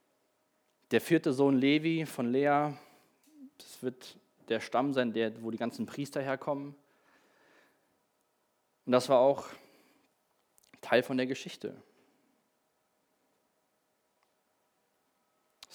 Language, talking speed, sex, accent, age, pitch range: German, 95 wpm, male, German, 20-39, 120-150 Hz